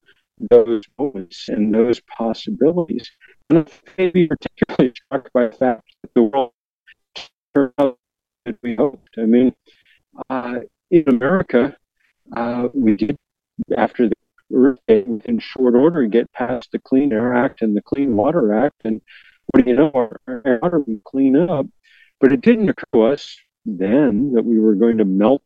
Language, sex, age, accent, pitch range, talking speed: English, male, 50-69, American, 115-150 Hz, 160 wpm